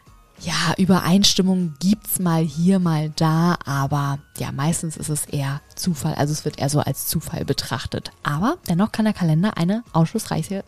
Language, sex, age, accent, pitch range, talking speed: German, female, 20-39, German, 160-195 Hz, 170 wpm